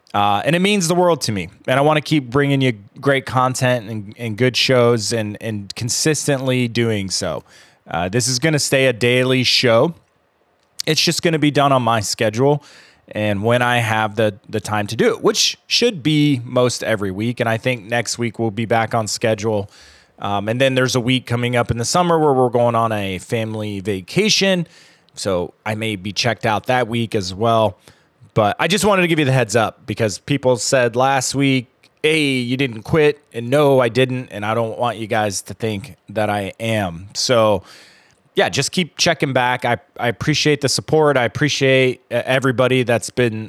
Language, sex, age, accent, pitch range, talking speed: English, male, 30-49, American, 110-135 Hz, 205 wpm